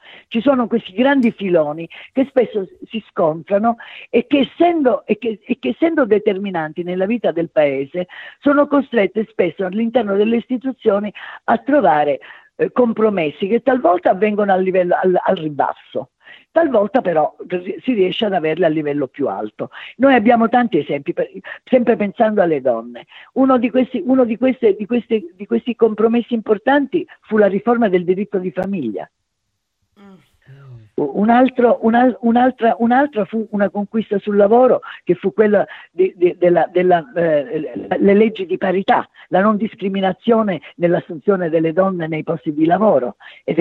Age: 50-69